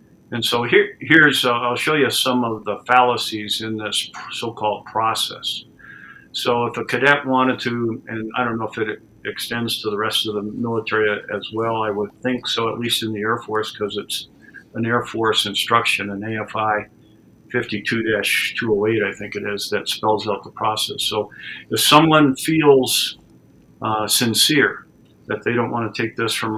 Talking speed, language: 180 wpm, English